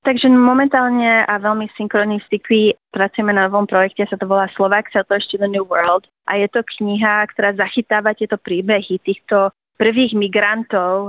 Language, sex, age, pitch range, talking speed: Slovak, female, 30-49, 195-220 Hz, 170 wpm